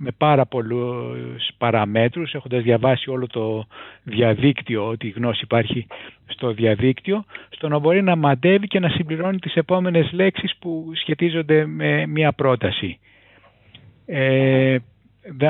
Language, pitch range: Greek, 120-170 Hz